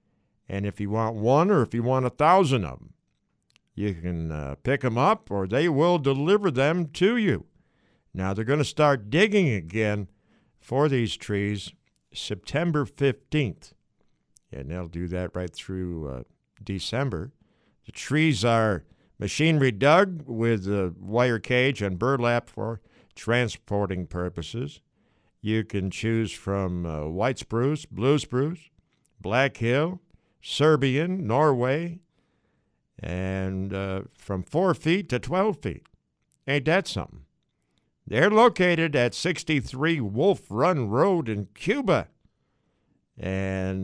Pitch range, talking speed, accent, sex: 100-150 Hz, 130 wpm, American, male